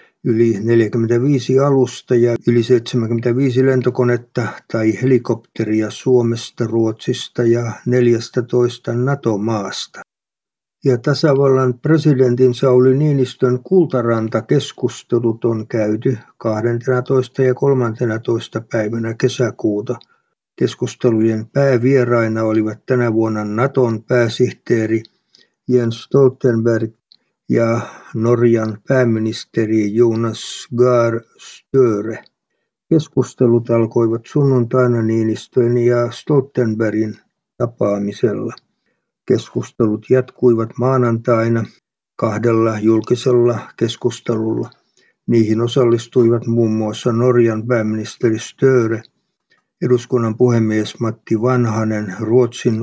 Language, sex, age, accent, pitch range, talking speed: Finnish, male, 60-79, native, 115-125 Hz, 75 wpm